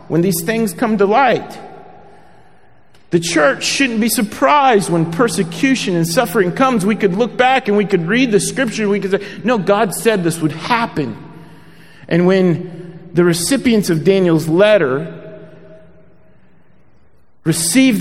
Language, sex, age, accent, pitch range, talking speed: English, male, 40-59, American, 150-195 Hz, 145 wpm